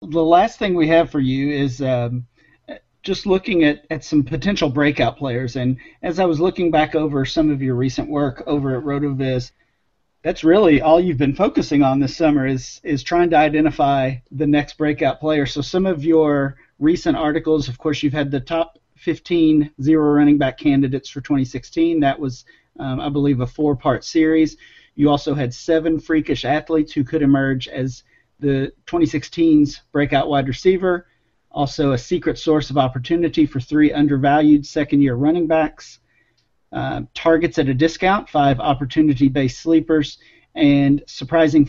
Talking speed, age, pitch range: 165 wpm, 40-59, 135-160 Hz